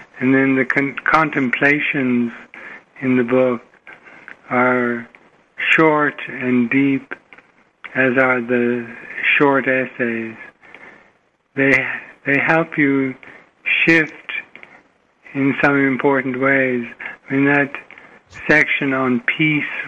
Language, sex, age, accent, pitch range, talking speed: English, male, 60-79, American, 125-145 Hz, 95 wpm